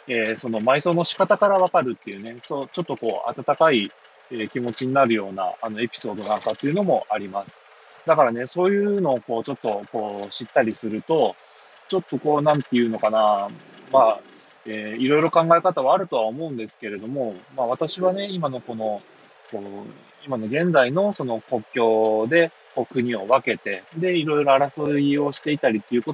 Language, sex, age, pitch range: Japanese, male, 20-39, 115-150 Hz